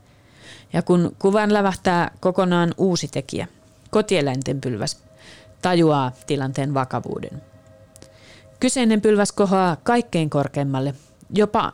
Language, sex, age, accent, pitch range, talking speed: Finnish, female, 30-49, native, 135-170 Hz, 90 wpm